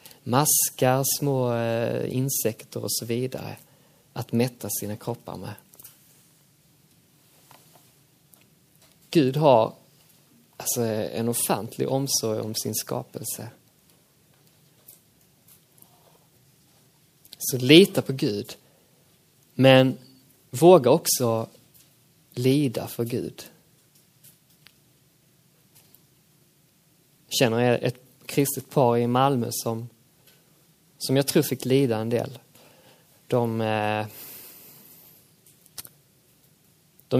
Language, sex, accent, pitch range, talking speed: Swedish, male, native, 120-155 Hz, 75 wpm